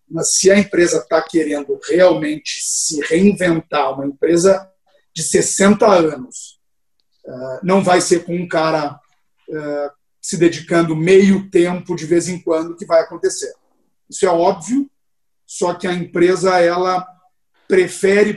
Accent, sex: Brazilian, male